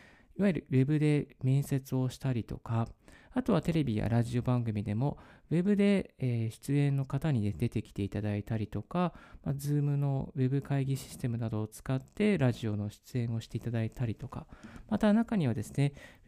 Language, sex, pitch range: Japanese, male, 115-155 Hz